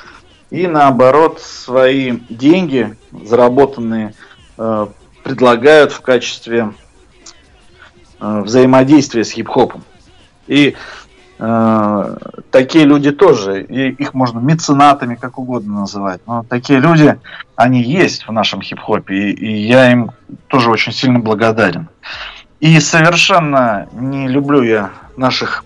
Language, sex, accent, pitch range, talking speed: Russian, male, native, 115-140 Hz, 105 wpm